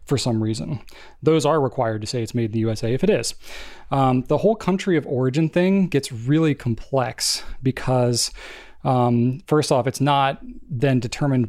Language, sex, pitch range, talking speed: English, male, 120-150 Hz, 180 wpm